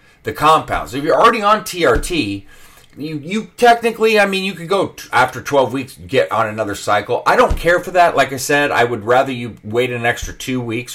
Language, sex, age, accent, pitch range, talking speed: English, male, 30-49, American, 105-145 Hz, 220 wpm